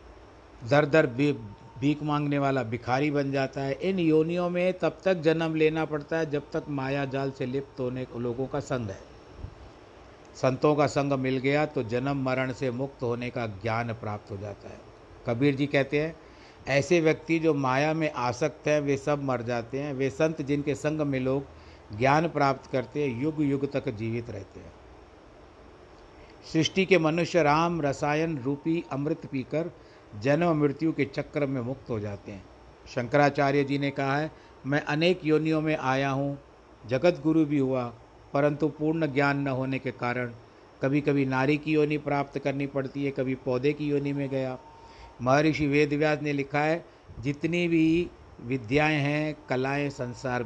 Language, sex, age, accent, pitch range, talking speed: Hindi, male, 50-69, native, 125-150 Hz, 170 wpm